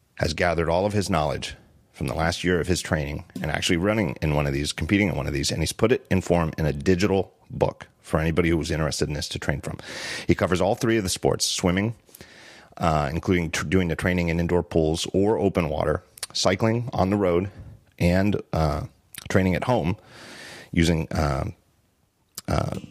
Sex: male